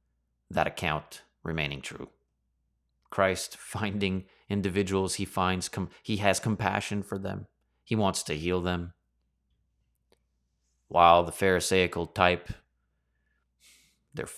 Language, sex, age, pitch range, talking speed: English, male, 30-49, 70-105 Hz, 105 wpm